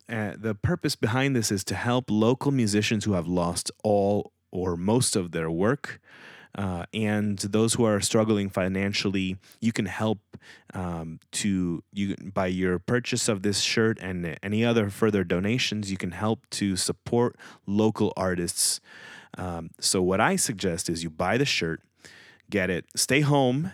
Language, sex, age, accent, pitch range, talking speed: English, male, 30-49, American, 95-120 Hz, 160 wpm